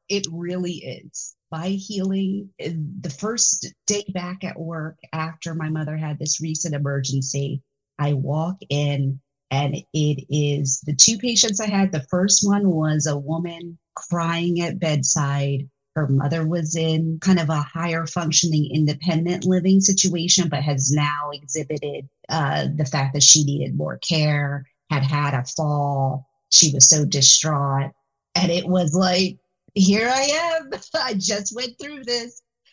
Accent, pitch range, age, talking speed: American, 145-185 Hz, 40-59, 150 wpm